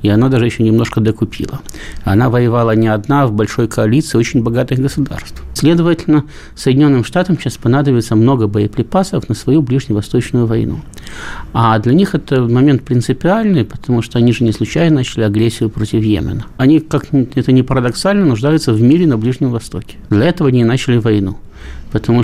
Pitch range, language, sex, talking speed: 110-135 Hz, Russian, male, 165 wpm